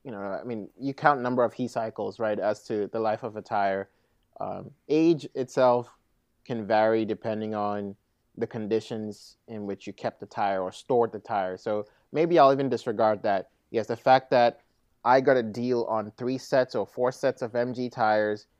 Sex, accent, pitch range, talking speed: male, American, 105-130 Hz, 195 wpm